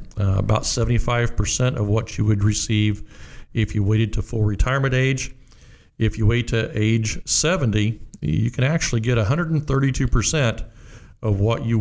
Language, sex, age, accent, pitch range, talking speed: English, male, 50-69, American, 105-125 Hz, 145 wpm